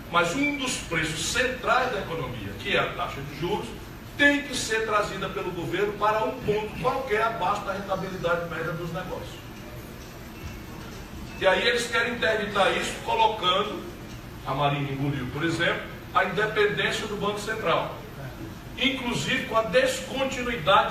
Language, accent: Portuguese, Brazilian